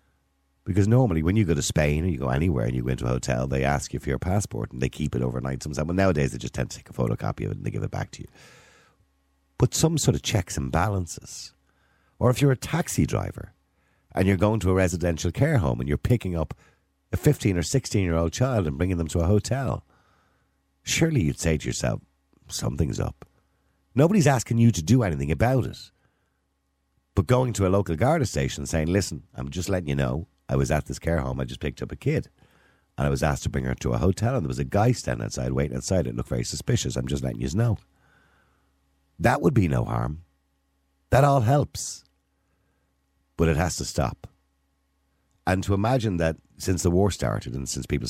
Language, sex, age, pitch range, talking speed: English, male, 50-69, 70-95 Hz, 220 wpm